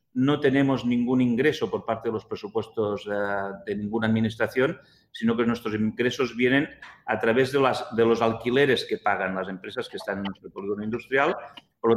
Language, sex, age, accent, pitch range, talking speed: English, male, 40-59, Spanish, 110-130 Hz, 185 wpm